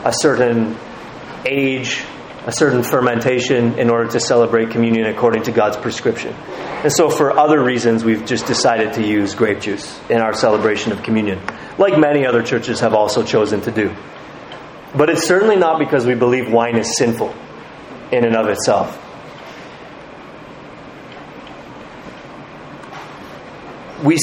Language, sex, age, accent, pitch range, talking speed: English, male, 30-49, American, 115-155 Hz, 140 wpm